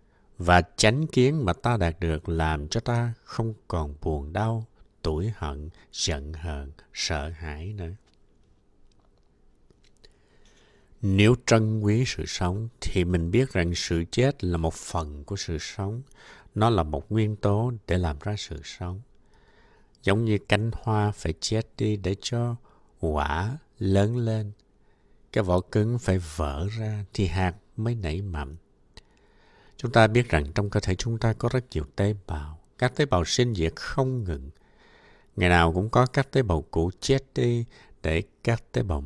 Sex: male